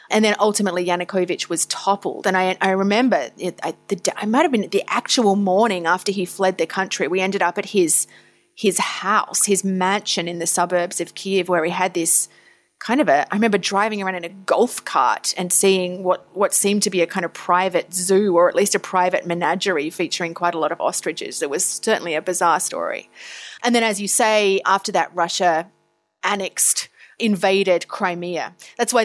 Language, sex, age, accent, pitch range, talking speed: English, female, 30-49, Australian, 175-210 Hz, 200 wpm